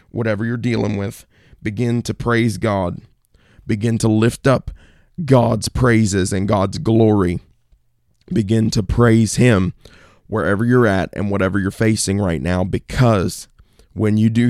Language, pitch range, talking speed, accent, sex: English, 100-120 Hz, 140 wpm, American, male